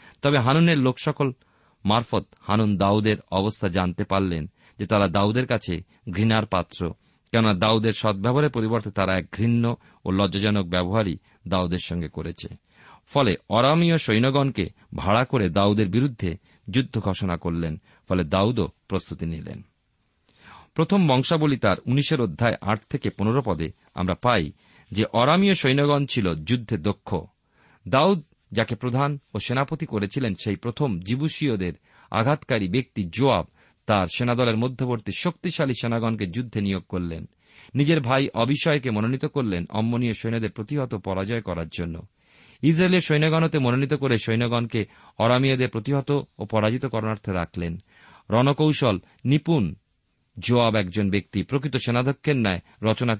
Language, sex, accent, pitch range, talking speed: Bengali, male, native, 100-135 Hz, 115 wpm